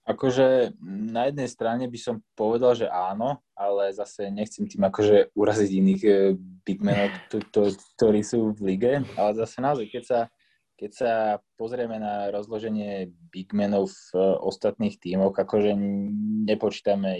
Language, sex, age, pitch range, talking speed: Slovak, male, 20-39, 95-105 Hz, 135 wpm